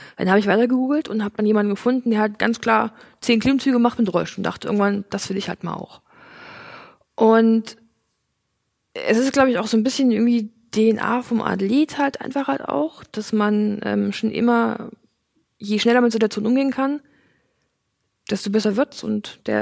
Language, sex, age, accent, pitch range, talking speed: German, female, 20-39, German, 210-245 Hz, 185 wpm